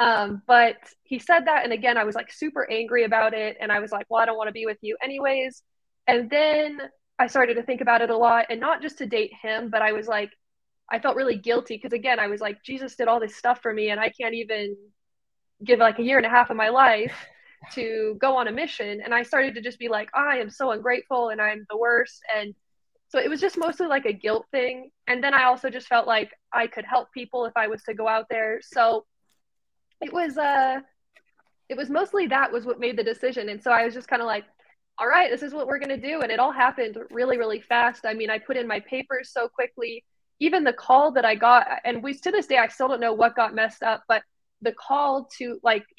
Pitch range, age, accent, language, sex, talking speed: 225-265 Hz, 20-39, American, English, female, 255 wpm